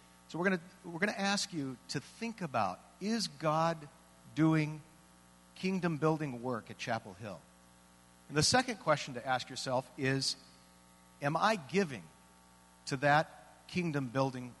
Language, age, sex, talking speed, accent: English, 50-69, male, 140 wpm, American